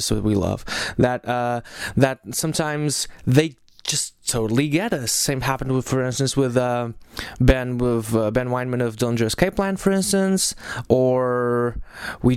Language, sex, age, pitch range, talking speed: English, male, 20-39, 115-150 Hz, 155 wpm